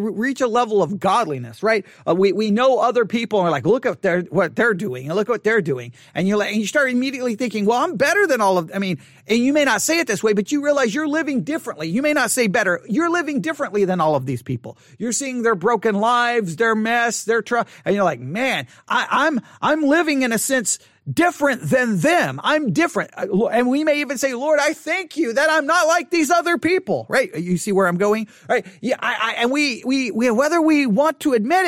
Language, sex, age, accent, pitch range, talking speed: English, male, 40-59, American, 200-280 Hz, 245 wpm